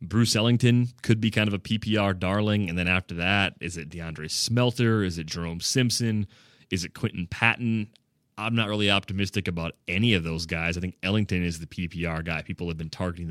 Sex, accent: male, American